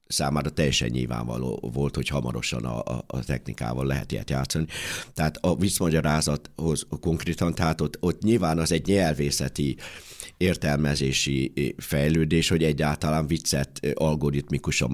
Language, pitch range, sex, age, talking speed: Hungarian, 75-90 Hz, male, 60-79, 115 wpm